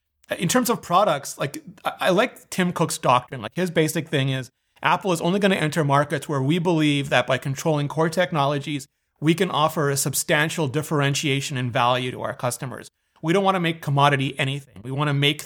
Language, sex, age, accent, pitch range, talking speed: English, male, 30-49, American, 135-170 Hz, 190 wpm